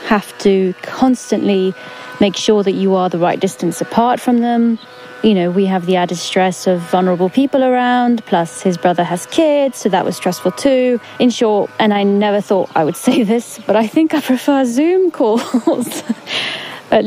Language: English